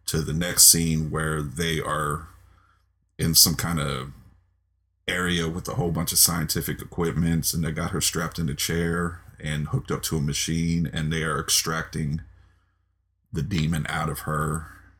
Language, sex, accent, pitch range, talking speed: English, male, American, 80-90 Hz, 170 wpm